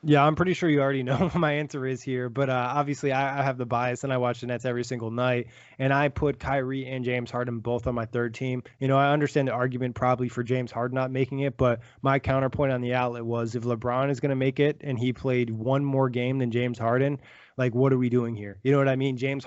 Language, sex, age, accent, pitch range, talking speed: English, male, 20-39, American, 120-135 Hz, 270 wpm